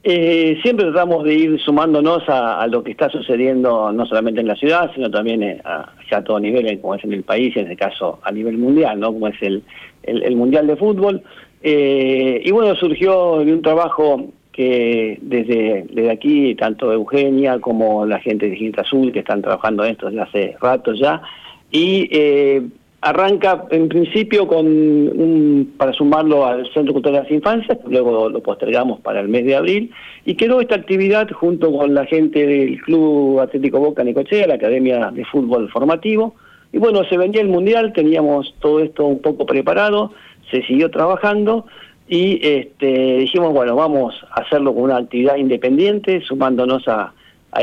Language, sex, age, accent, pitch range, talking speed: Spanish, male, 50-69, Argentinian, 125-175 Hz, 180 wpm